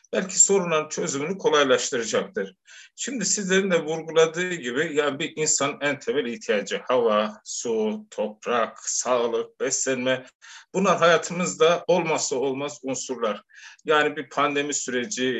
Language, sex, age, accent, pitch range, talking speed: Turkish, male, 50-69, native, 140-220 Hz, 115 wpm